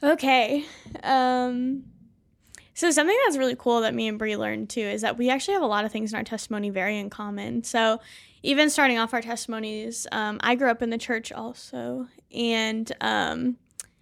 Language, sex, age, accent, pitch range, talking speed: English, female, 10-29, American, 225-265 Hz, 185 wpm